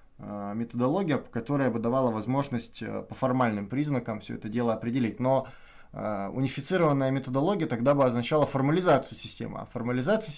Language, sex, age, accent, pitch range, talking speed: Russian, male, 20-39, native, 115-145 Hz, 125 wpm